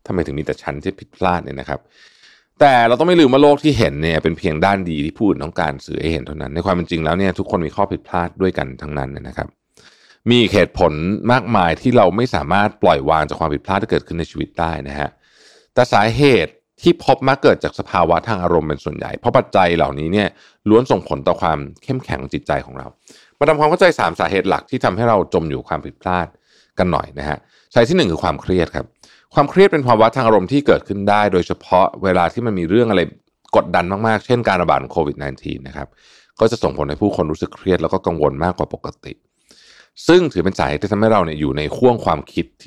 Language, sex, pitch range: Thai, male, 75-110 Hz